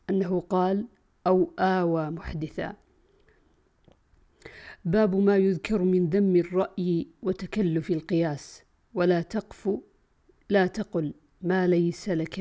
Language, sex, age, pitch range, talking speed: Arabic, female, 50-69, 170-195 Hz, 95 wpm